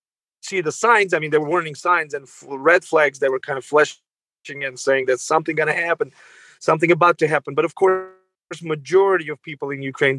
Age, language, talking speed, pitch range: 30-49, English, 220 wpm, 145-175 Hz